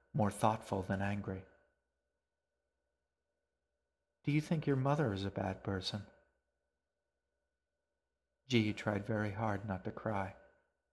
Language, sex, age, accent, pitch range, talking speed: English, male, 40-59, American, 105-140 Hz, 115 wpm